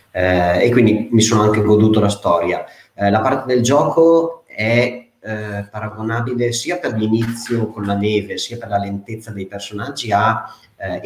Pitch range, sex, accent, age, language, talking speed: 95-110 Hz, male, native, 30-49, Italian, 170 wpm